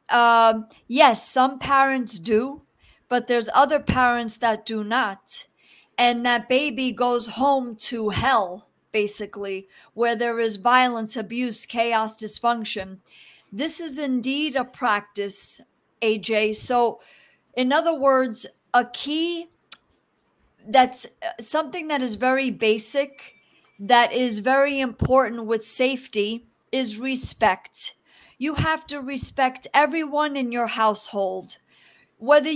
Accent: American